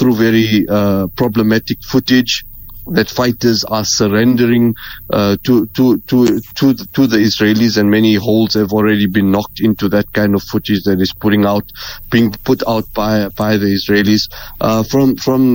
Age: 30-49